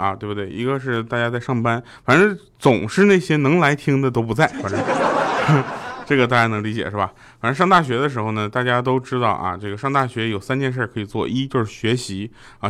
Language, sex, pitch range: Chinese, male, 105-135 Hz